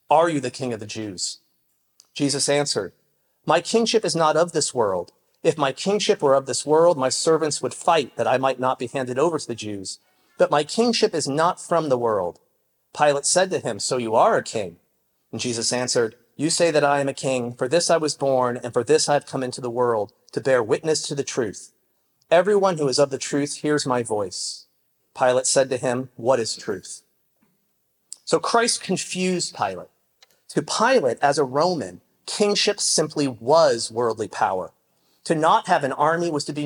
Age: 40-59